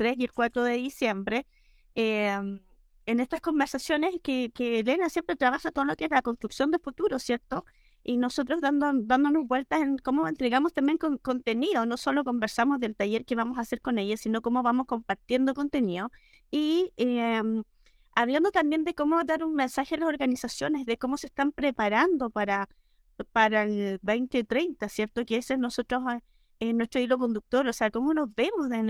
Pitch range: 230-290 Hz